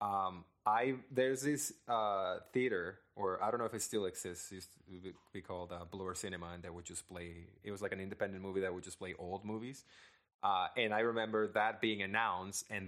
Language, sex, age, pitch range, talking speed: English, male, 20-39, 85-105 Hz, 215 wpm